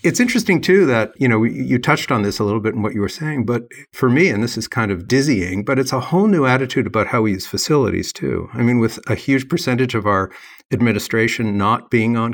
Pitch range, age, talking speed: 105-130 Hz, 50-69, 250 wpm